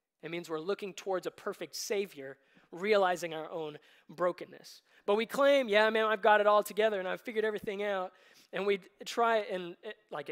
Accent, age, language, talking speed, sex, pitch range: American, 20-39, English, 185 wpm, male, 165-215 Hz